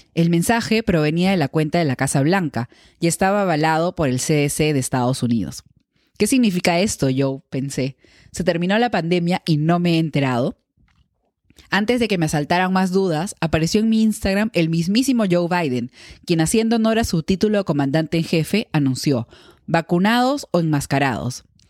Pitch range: 145-200 Hz